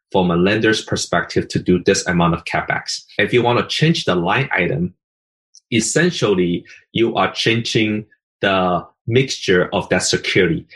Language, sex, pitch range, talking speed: English, male, 95-125 Hz, 150 wpm